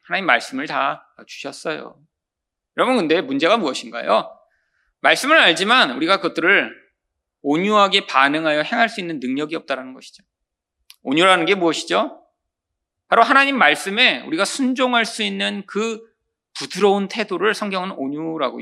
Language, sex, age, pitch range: Korean, male, 40-59, 180-255 Hz